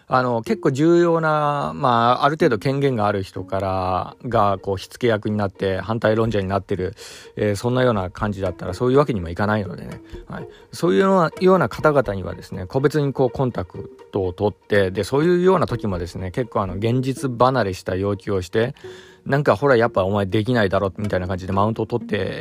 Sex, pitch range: male, 100-160 Hz